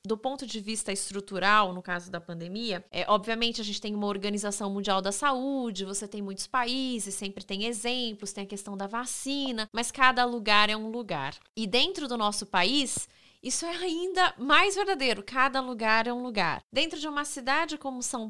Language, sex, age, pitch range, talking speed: Portuguese, female, 20-39, 205-265 Hz, 185 wpm